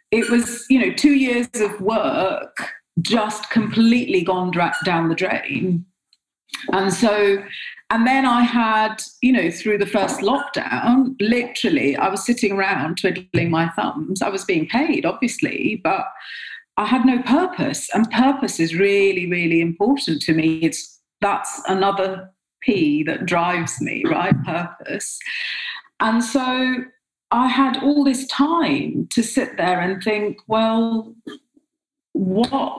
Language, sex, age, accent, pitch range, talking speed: English, female, 40-59, British, 185-255 Hz, 135 wpm